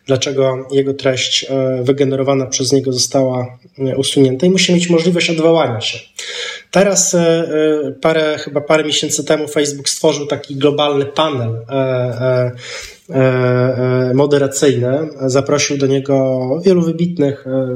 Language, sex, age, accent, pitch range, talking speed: Polish, male, 20-39, native, 135-155 Hz, 100 wpm